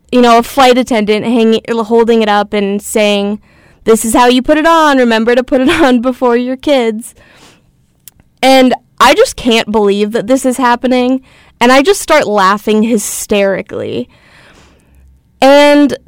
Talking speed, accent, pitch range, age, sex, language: 155 wpm, American, 215-275 Hz, 10-29, female, English